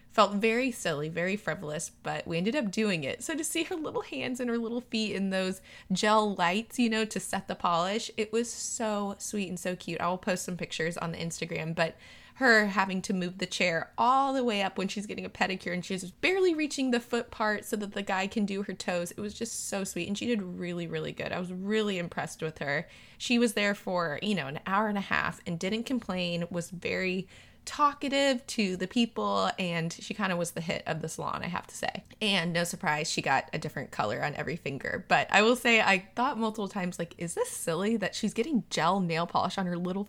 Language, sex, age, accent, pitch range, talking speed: English, female, 20-39, American, 175-220 Hz, 240 wpm